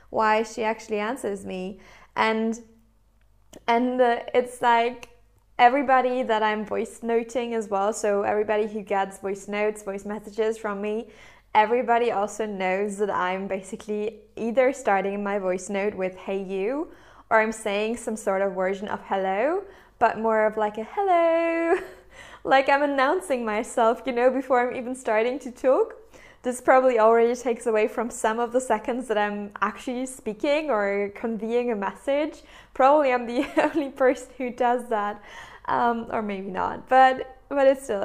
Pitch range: 205-260 Hz